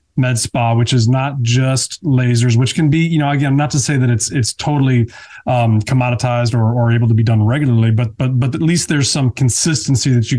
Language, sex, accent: English, male, American